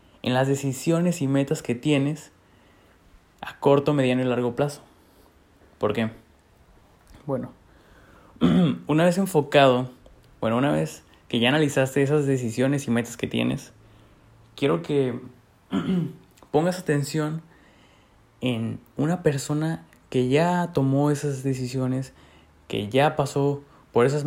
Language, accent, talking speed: Spanish, Mexican, 120 wpm